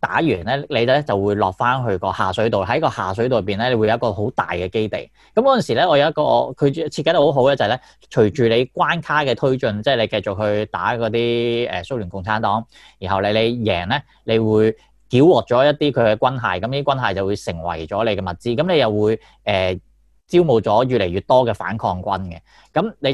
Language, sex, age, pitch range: Chinese, male, 20-39, 100-130 Hz